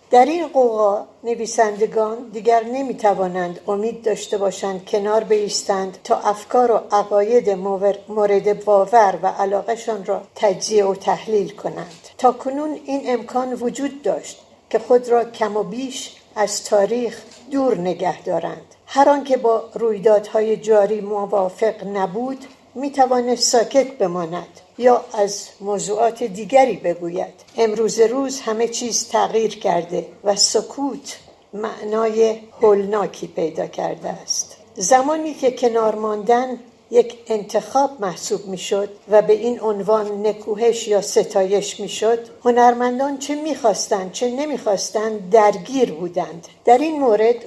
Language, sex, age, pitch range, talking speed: Persian, female, 60-79, 200-240 Hz, 120 wpm